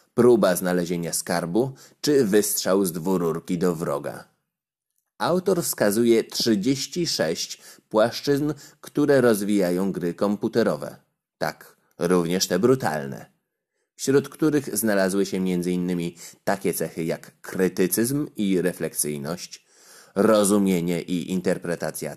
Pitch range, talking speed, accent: 90-120 Hz, 95 wpm, native